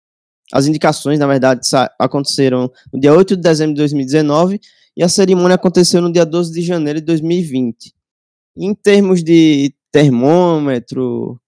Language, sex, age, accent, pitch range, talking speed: Portuguese, male, 20-39, Brazilian, 135-170 Hz, 140 wpm